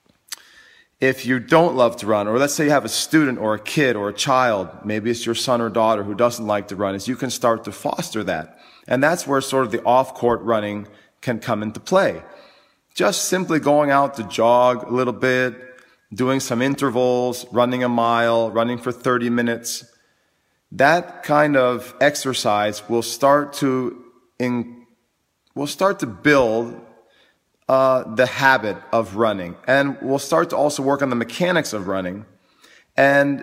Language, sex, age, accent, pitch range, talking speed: English, male, 40-59, American, 115-140 Hz, 175 wpm